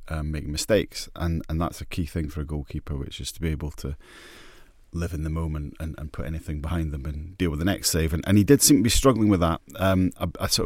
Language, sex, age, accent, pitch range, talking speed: English, male, 30-49, British, 80-95 Hz, 270 wpm